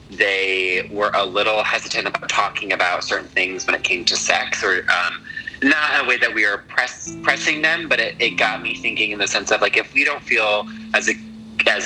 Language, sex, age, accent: Greek, male, 20-39, American